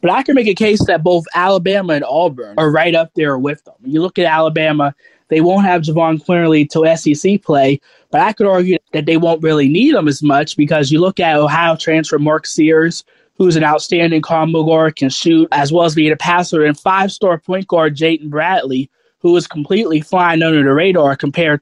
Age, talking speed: 20-39, 210 wpm